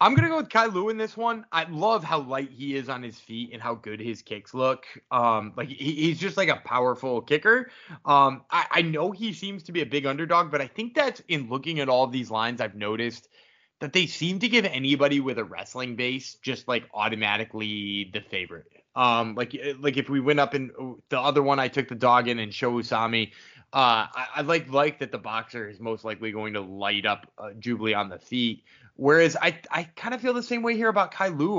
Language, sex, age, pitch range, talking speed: English, male, 20-39, 115-155 Hz, 235 wpm